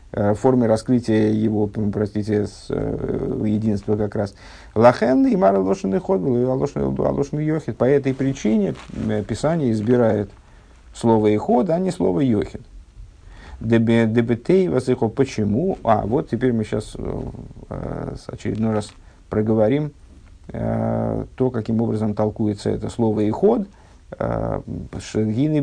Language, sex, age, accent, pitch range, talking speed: Russian, male, 50-69, native, 105-130 Hz, 95 wpm